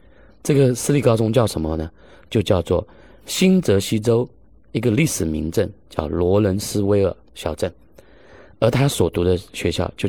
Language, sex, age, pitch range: Chinese, male, 30-49, 85-115 Hz